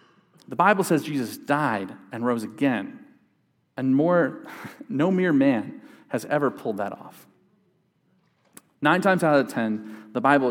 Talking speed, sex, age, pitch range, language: 145 wpm, male, 40-59, 110-160 Hz, English